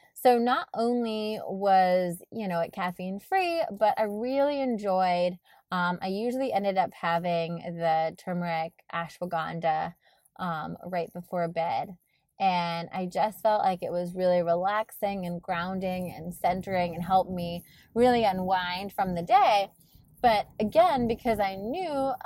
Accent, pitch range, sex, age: American, 170-210 Hz, female, 20-39